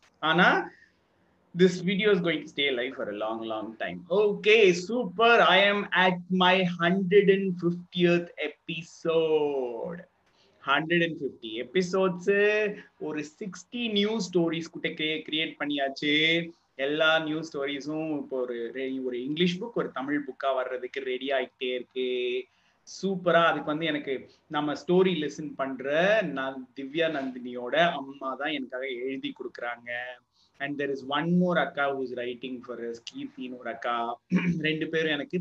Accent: native